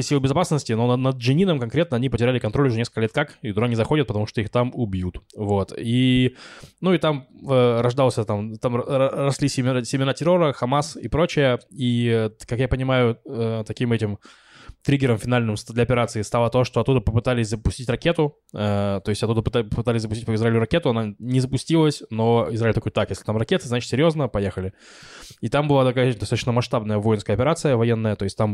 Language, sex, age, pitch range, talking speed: Russian, male, 20-39, 105-130 Hz, 185 wpm